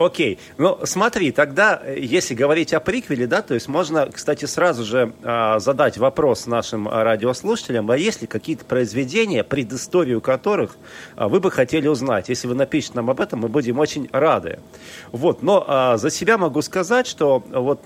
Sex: male